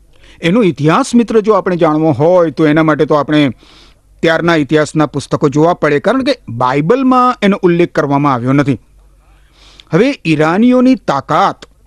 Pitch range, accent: 120-180 Hz, native